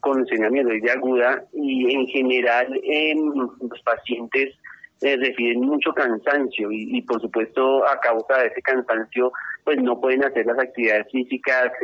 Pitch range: 120-145 Hz